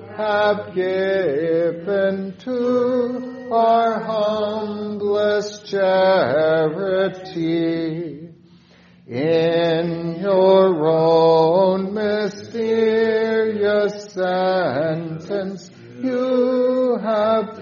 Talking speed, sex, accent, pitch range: 45 wpm, male, American, 185-225 Hz